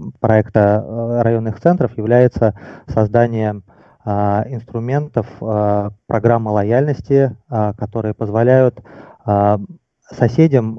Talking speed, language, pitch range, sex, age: 60 wpm, Russian, 105-120 Hz, male, 20-39